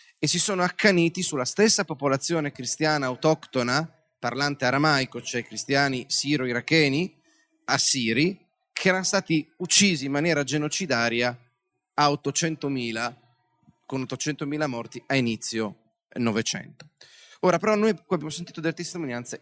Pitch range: 125-155 Hz